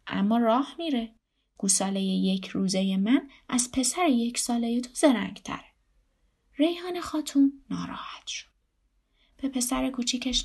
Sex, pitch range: female, 210-280 Hz